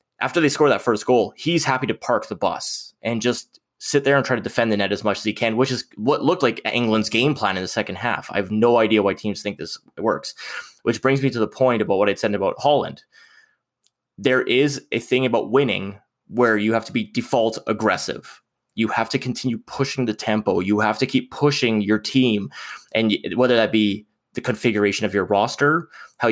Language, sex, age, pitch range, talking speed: English, male, 20-39, 105-125 Hz, 220 wpm